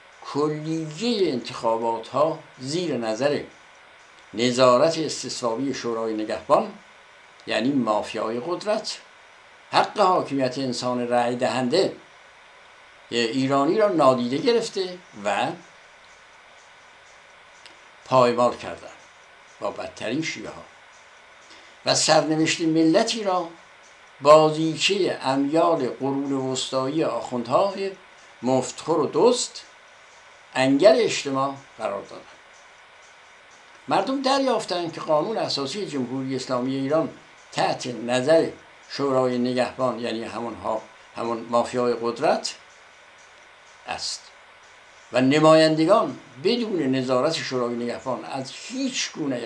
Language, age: Persian, 60-79